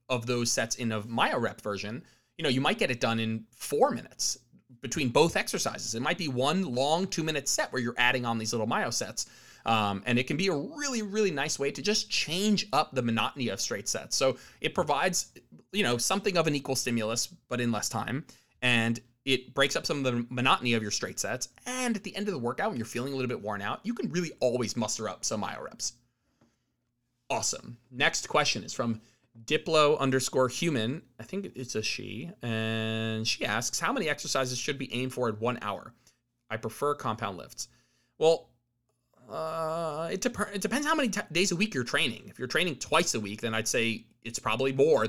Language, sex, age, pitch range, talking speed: English, male, 20-39, 115-150 Hz, 215 wpm